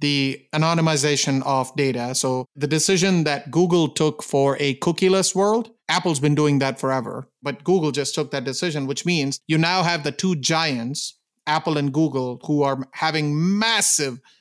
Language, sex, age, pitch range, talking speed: English, male, 30-49, 145-180 Hz, 165 wpm